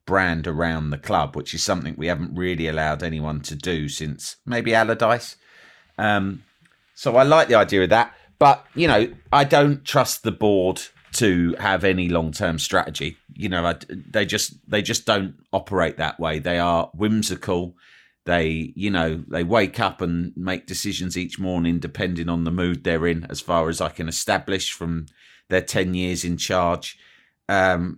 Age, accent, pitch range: 30-49, British, 80-95 Hz